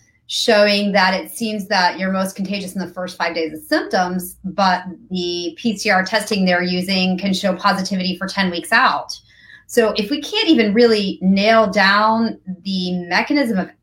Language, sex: English, female